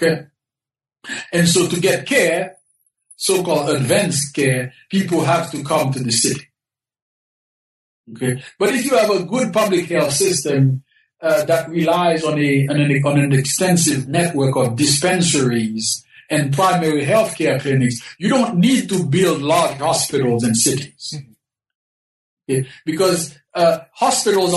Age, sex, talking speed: 60-79, male, 130 wpm